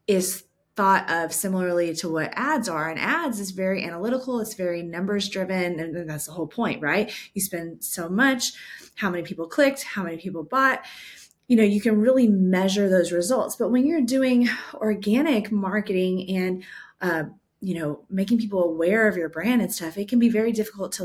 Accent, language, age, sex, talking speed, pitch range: American, English, 20-39, female, 190 wpm, 180-230 Hz